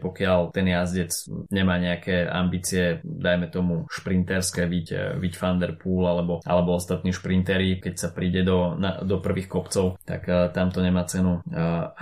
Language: Slovak